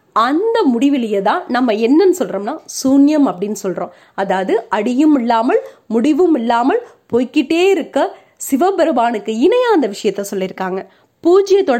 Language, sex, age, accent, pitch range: Tamil, female, 30-49, native, 215-345 Hz